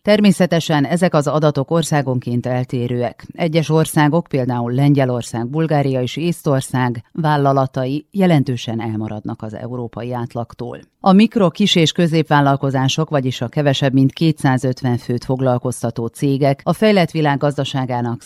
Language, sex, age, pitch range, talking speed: Hungarian, female, 40-59, 120-155 Hz, 120 wpm